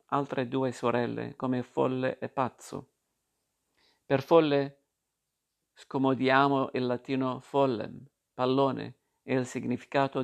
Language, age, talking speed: Italian, 50-69, 100 wpm